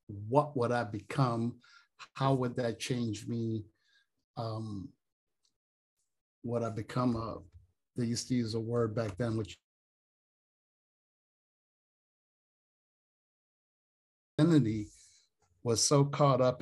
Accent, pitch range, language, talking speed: American, 110-135 Hz, English, 100 wpm